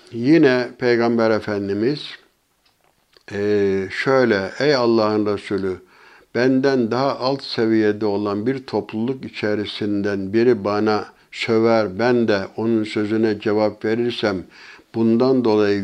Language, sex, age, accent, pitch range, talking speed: Turkish, male, 60-79, native, 105-120 Hz, 100 wpm